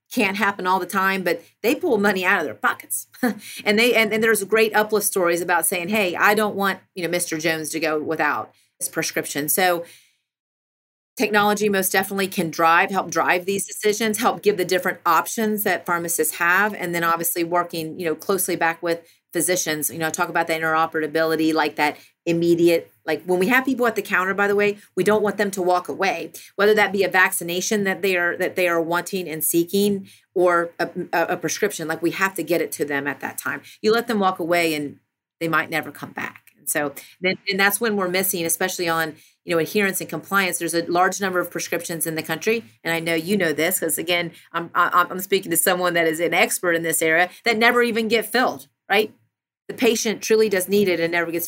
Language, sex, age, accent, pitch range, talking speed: English, female, 30-49, American, 160-195 Hz, 220 wpm